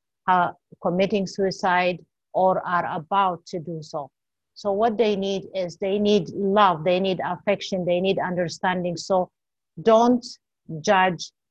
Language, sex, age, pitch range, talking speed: English, female, 50-69, 165-190 Hz, 140 wpm